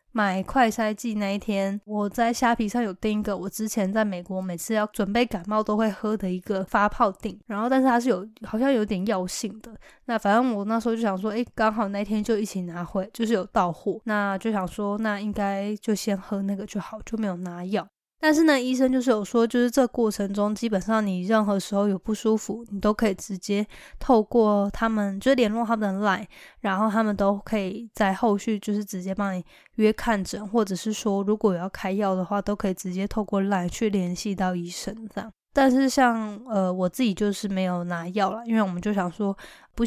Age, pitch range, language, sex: 10-29, 195-225 Hz, Chinese, female